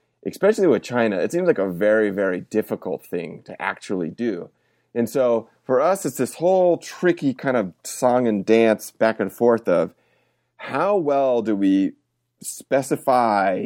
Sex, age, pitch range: male, 30-49, 105-135 Hz